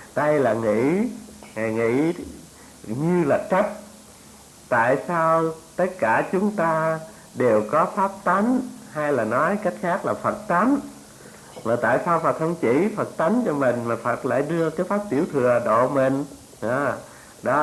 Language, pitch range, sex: Vietnamese, 125-195 Hz, male